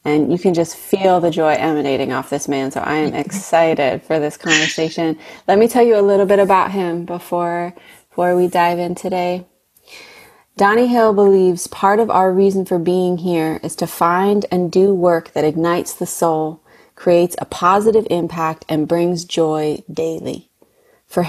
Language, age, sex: English, 30-49, female